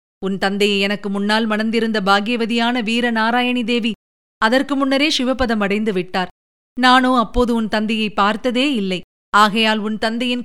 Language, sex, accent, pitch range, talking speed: Tamil, female, native, 205-240 Hz, 120 wpm